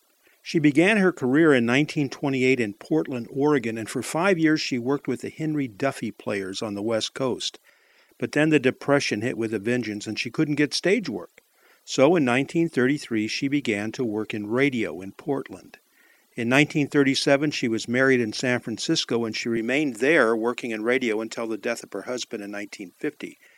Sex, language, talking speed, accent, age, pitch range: male, English, 185 wpm, American, 50-69, 115-145 Hz